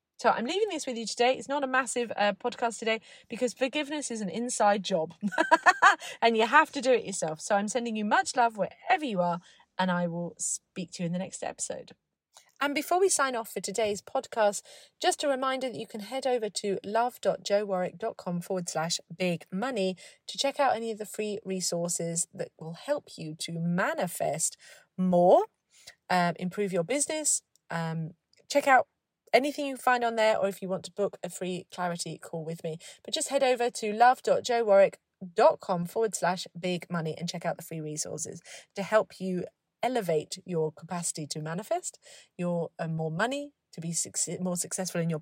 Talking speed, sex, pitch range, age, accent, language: 185 wpm, female, 175-260 Hz, 30-49, British, English